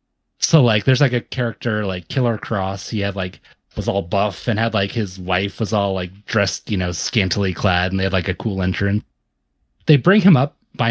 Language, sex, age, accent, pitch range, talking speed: English, male, 30-49, American, 95-125 Hz, 220 wpm